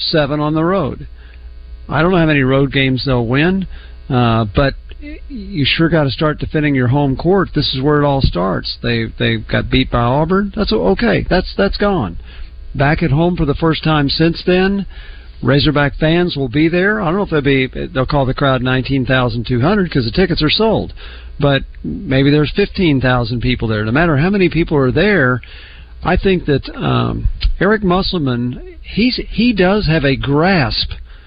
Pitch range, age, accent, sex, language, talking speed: 120-170 Hz, 50-69, American, male, English, 185 wpm